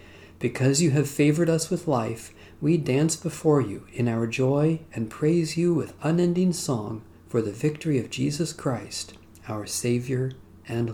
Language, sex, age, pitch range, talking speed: English, male, 40-59, 100-145 Hz, 160 wpm